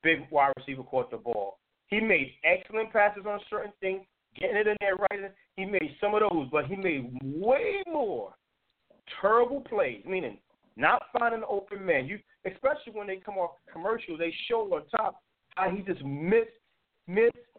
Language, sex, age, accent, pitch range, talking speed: English, male, 40-59, American, 150-210 Hz, 175 wpm